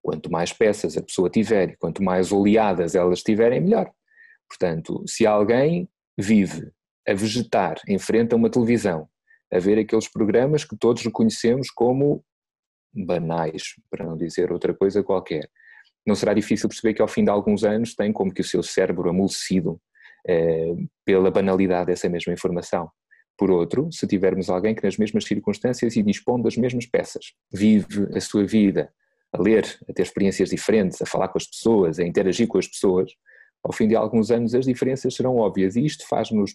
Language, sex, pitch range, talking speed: Portuguese, male, 95-120 Hz, 175 wpm